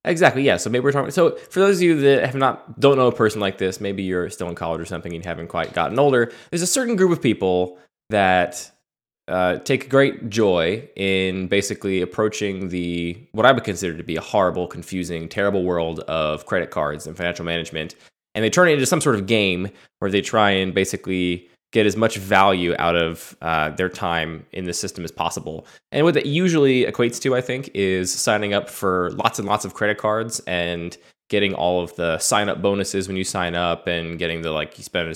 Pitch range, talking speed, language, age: 85-105 Hz, 220 wpm, English, 20-39